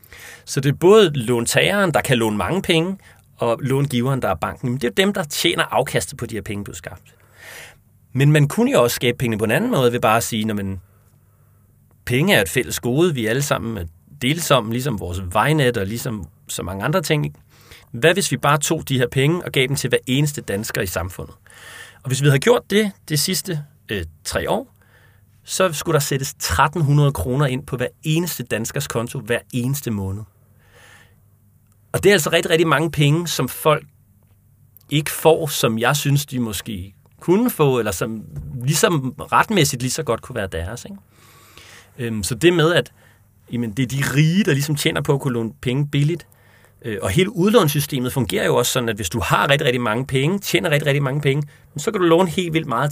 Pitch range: 110-150 Hz